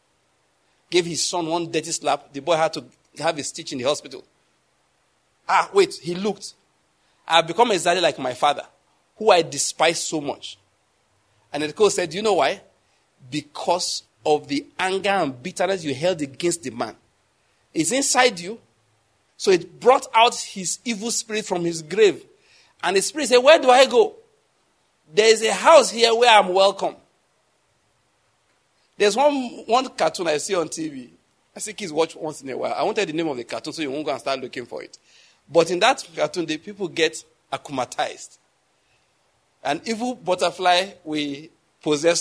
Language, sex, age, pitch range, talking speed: English, male, 50-69, 155-225 Hz, 180 wpm